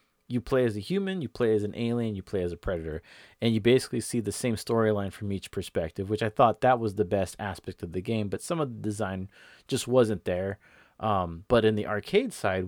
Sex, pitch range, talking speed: male, 95-115 Hz, 235 wpm